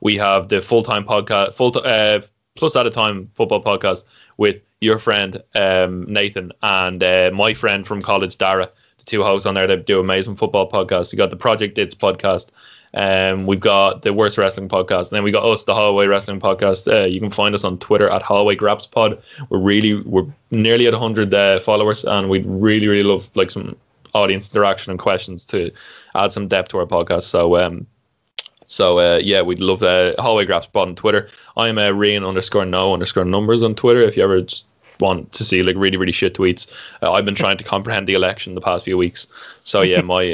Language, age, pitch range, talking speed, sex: English, 20-39, 95-110 Hz, 215 wpm, male